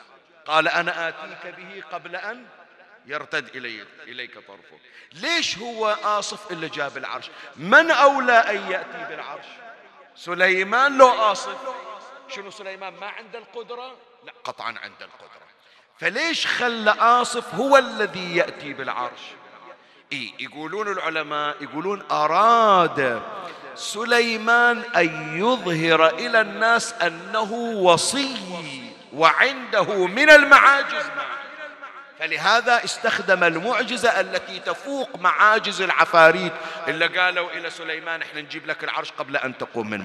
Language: Arabic